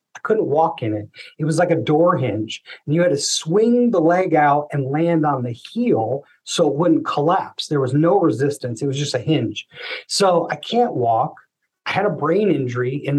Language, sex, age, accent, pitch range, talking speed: English, male, 30-49, American, 135-175 Hz, 215 wpm